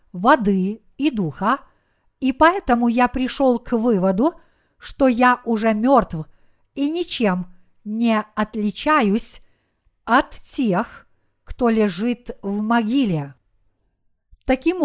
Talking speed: 95 wpm